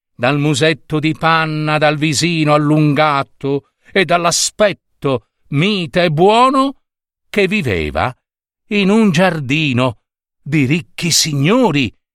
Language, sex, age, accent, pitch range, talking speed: Italian, male, 50-69, native, 110-155 Hz, 100 wpm